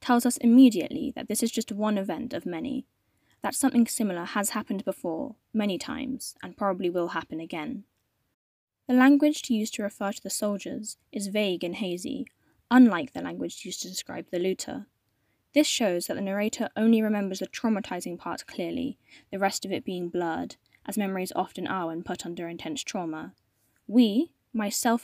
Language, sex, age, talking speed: English, female, 10-29, 175 wpm